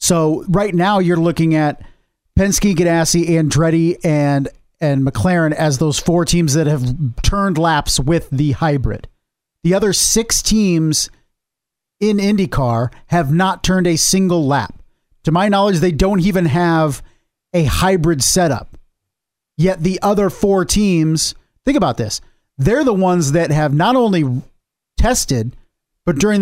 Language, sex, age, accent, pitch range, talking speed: English, male, 40-59, American, 150-185 Hz, 145 wpm